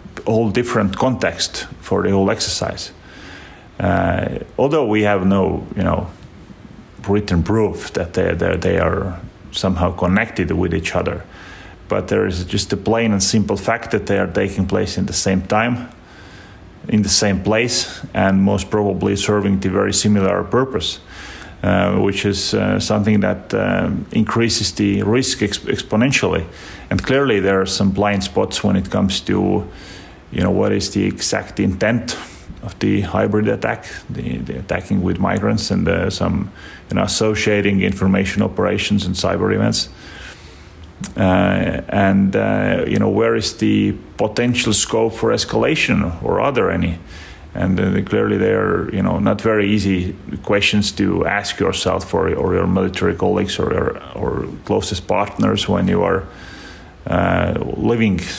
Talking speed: 155 wpm